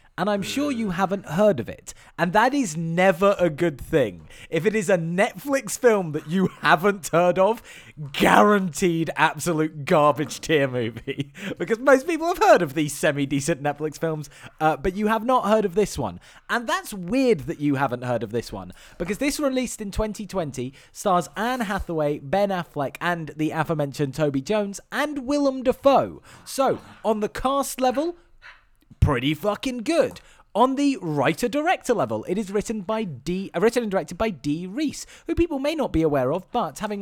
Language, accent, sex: English, British, male